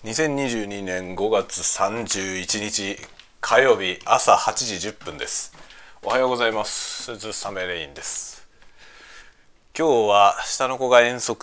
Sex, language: male, Japanese